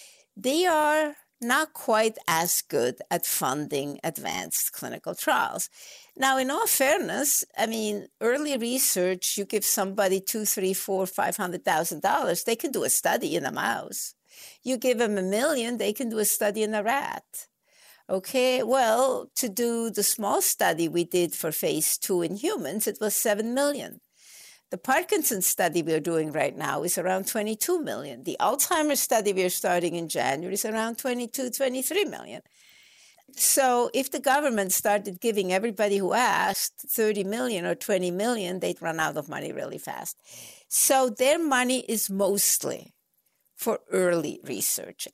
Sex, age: female, 60-79